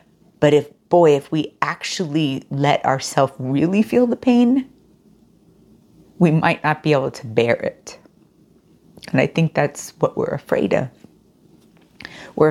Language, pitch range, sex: English, 140-175 Hz, female